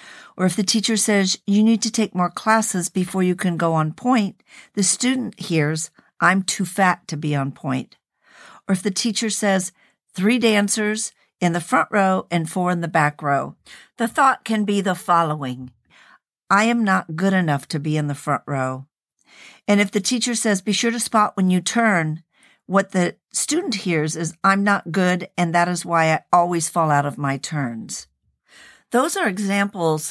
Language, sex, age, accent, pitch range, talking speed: English, female, 50-69, American, 165-205 Hz, 190 wpm